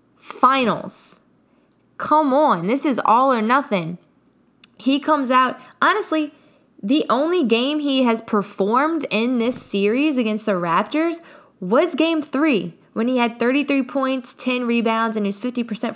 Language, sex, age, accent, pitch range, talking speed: English, female, 10-29, American, 205-275 Hz, 145 wpm